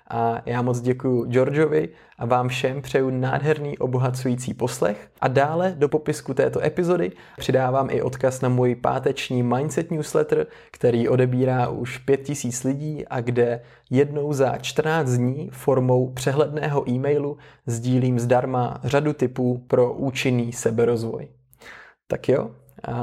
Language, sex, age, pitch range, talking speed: Czech, male, 20-39, 125-145 Hz, 130 wpm